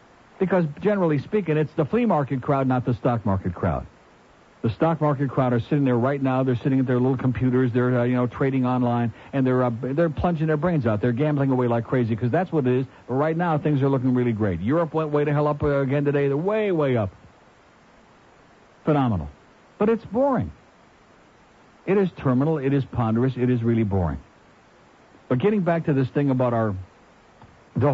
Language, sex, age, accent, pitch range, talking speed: English, male, 60-79, American, 125-165 Hz, 205 wpm